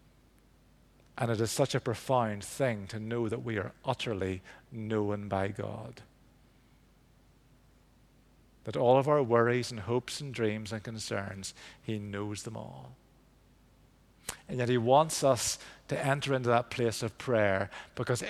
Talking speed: 145 wpm